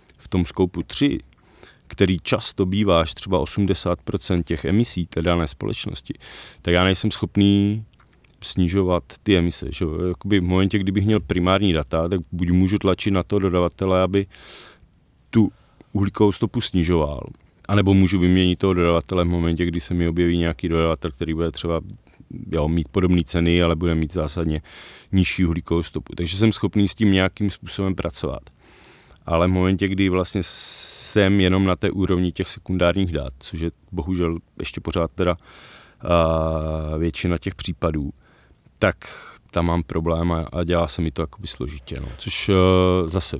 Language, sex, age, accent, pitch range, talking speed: Czech, male, 30-49, native, 85-95 Hz, 160 wpm